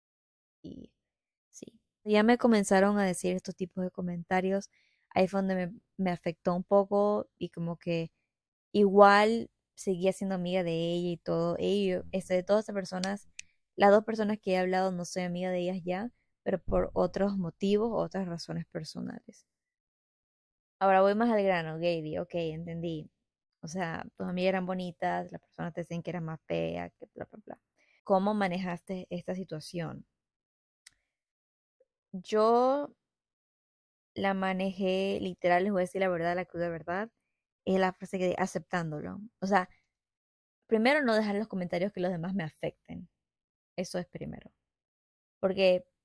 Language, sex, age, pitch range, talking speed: Spanish, female, 20-39, 175-200 Hz, 155 wpm